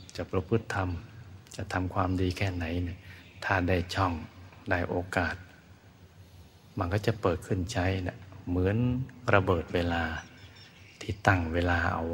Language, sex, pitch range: Thai, male, 90-100 Hz